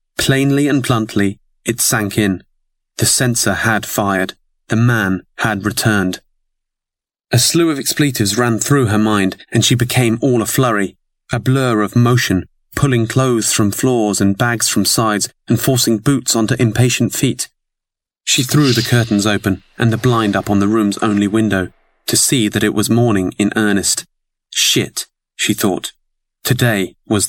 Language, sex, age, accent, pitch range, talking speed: English, male, 30-49, British, 100-120 Hz, 160 wpm